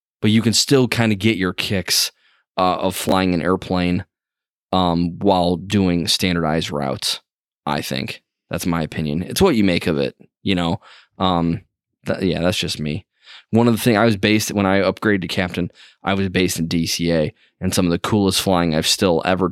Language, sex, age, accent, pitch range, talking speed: English, male, 20-39, American, 90-105 Hz, 195 wpm